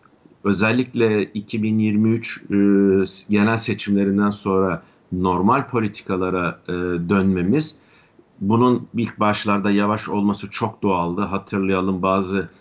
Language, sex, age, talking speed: Turkish, male, 50-69, 90 wpm